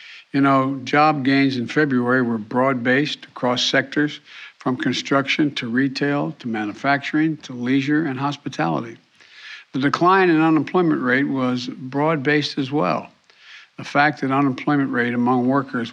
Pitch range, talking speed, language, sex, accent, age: 125-145 Hz, 135 wpm, English, male, American, 60-79